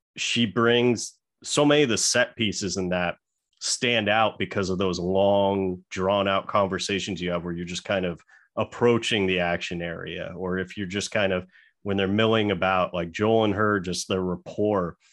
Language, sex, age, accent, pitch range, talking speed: English, male, 30-49, American, 95-105 Hz, 185 wpm